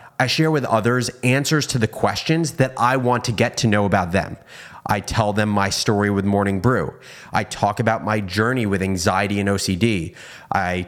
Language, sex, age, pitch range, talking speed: English, male, 30-49, 100-130 Hz, 195 wpm